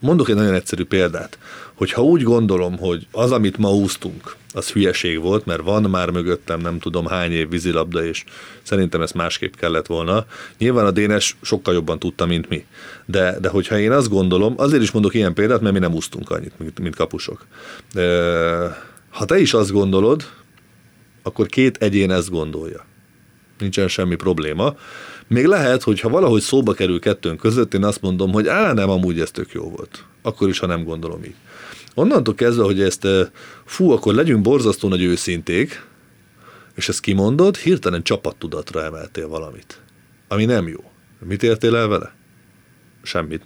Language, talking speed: Hungarian, 170 wpm